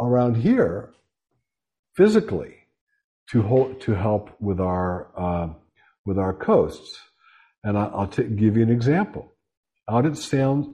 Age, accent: 60-79, American